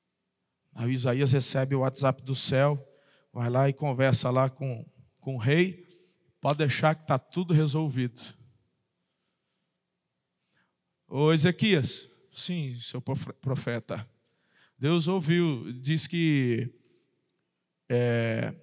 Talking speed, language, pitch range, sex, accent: 105 wpm, Portuguese, 140-180 Hz, male, Brazilian